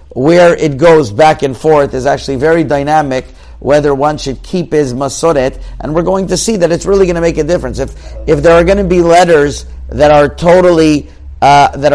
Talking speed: 210 wpm